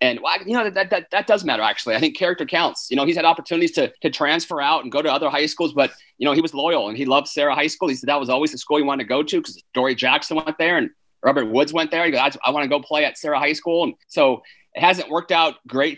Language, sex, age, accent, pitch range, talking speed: English, male, 30-49, American, 140-170 Hz, 300 wpm